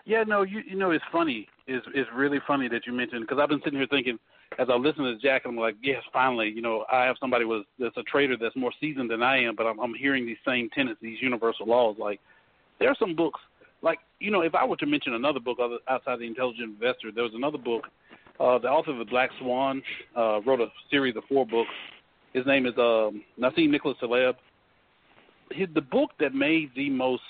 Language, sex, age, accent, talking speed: English, male, 40-59, American, 230 wpm